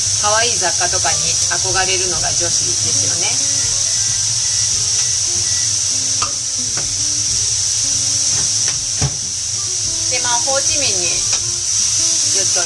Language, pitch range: Japanese, 105-115 Hz